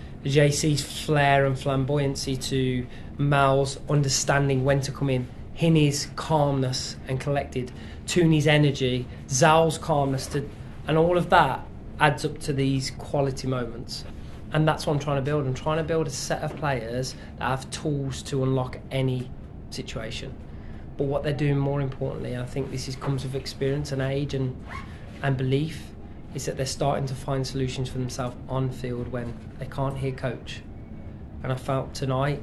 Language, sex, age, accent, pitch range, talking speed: English, male, 20-39, British, 125-140 Hz, 165 wpm